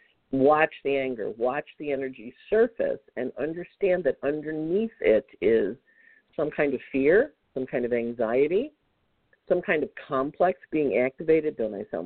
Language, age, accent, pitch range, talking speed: English, 50-69, American, 120-175 Hz, 150 wpm